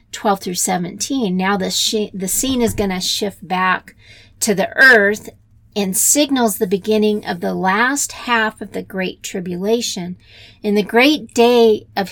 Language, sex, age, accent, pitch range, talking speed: English, female, 40-59, American, 185-220 Hz, 165 wpm